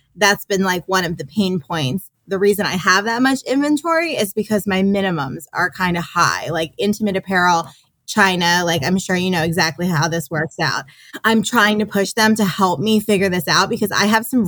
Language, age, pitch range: English, 20-39, 175-215 Hz